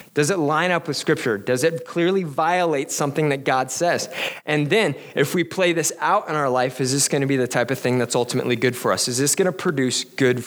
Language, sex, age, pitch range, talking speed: English, male, 20-39, 135-170 Hz, 250 wpm